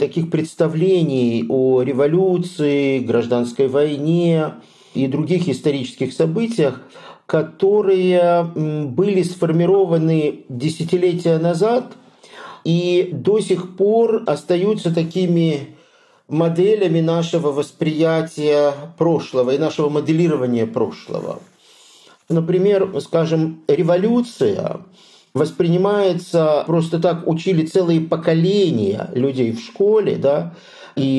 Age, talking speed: 50-69, 85 wpm